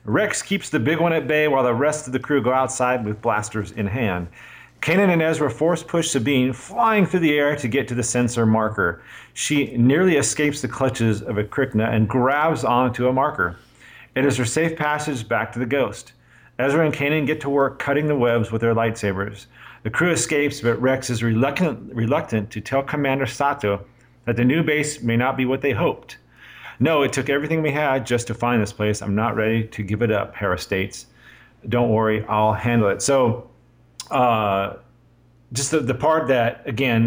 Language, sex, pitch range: English, male, 110-135 Hz